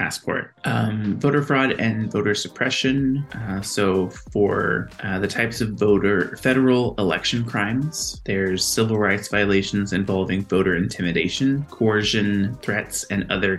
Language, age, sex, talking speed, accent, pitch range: English, 20-39, male, 130 wpm, American, 95-115 Hz